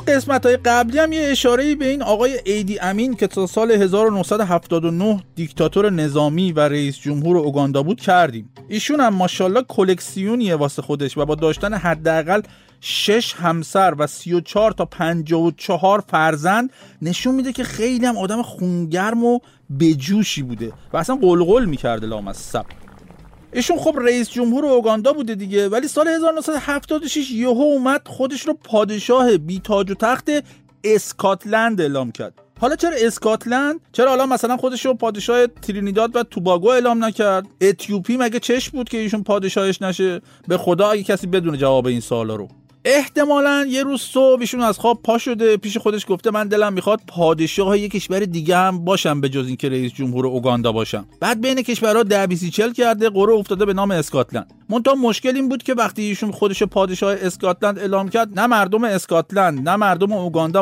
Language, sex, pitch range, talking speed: Persian, male, 175-240 Hz, 160 wpm